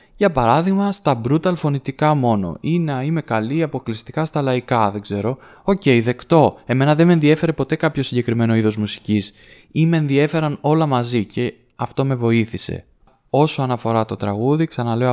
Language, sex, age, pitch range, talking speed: Greek, male, 20-39, 115-140 Hz, 165 wpm